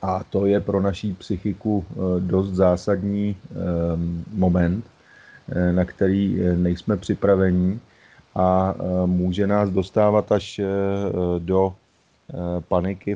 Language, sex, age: Czech, male, 30-49